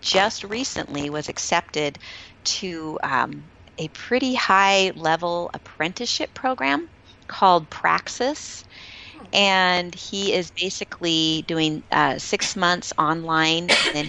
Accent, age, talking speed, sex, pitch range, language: American, 40-59, 100 wpm, female, 145-185 Hz, English